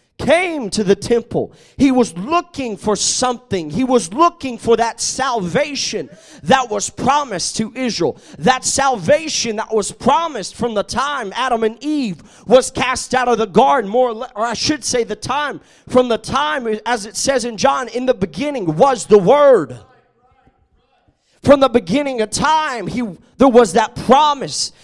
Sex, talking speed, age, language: male, 165 wpm, 30-49, English